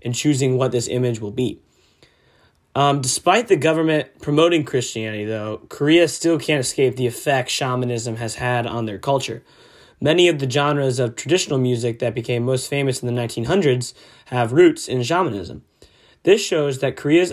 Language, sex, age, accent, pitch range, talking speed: English, male, 20-39, American, 120-145 Hz, 165 wpm